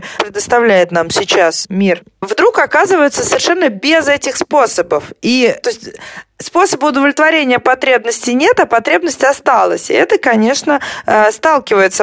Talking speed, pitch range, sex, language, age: 120 wpm, 195-270 Hz, female, Russian, 20-39